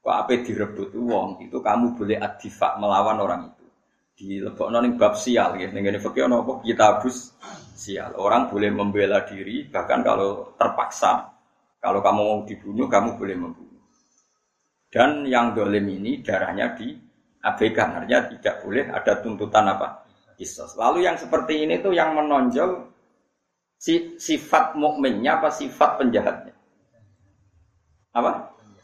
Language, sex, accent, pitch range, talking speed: Indonesian, male, native, 110-175 Hz, 125 wpm